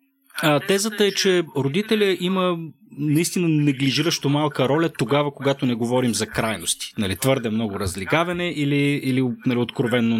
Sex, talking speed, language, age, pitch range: male, 140 wpm, Bulgarian, 30-49, 110-150 Hz